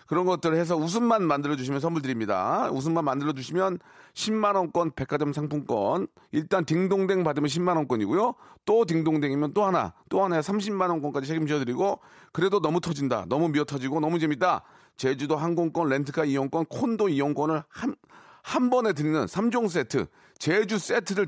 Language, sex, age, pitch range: Korean, male, 40-59, 145-195 Hz